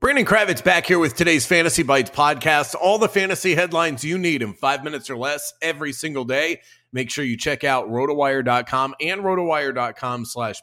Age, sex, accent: 30-49, male, American